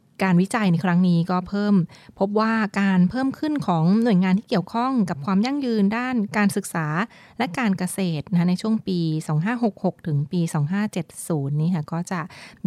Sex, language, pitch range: female, Thai, 170-210 Hz